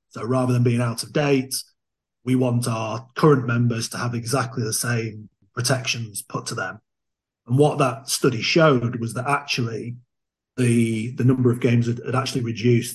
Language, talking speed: English, 175 wpm